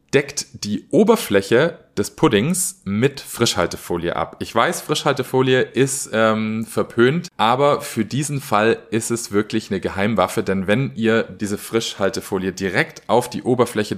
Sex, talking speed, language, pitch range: male, 135 wpm, German, 95-130 Hz